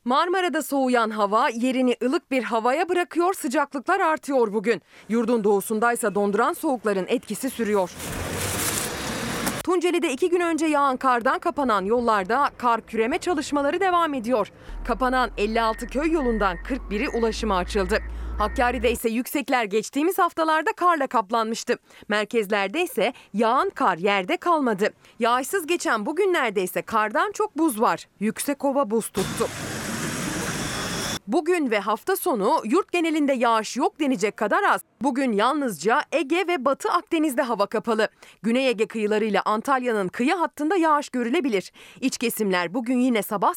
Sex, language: female, Turkish